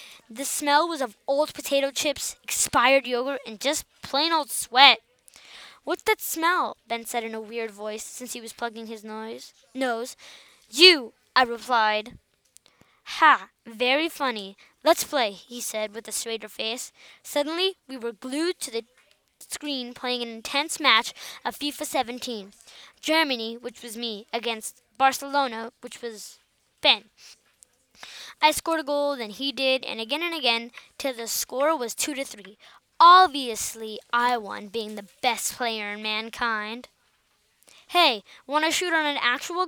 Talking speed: 150 wpm